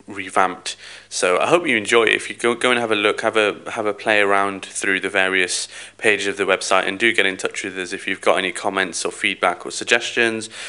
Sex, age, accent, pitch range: male, 20-39, British, 95-110 Hz